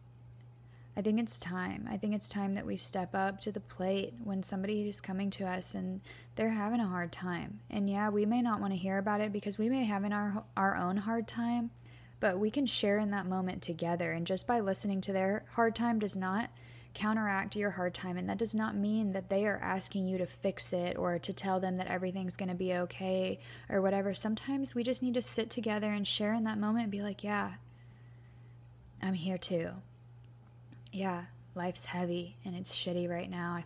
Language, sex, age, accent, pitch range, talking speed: English, female, 20-39, American, 175-200 Hz, 215 wpm